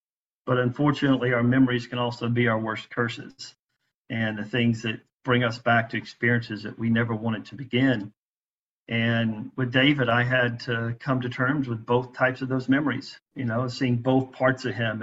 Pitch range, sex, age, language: 115-130 Hz, male, 50-69, English